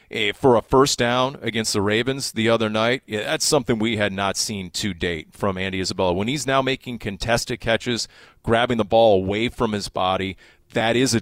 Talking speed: 200 wpm